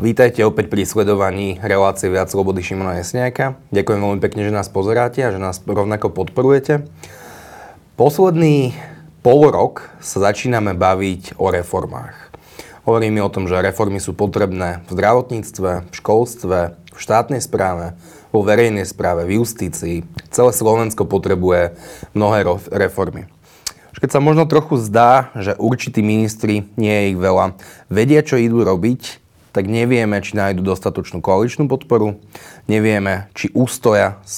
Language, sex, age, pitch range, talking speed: Slovak, male, 20-39, 95-115 Hz, 135 wpm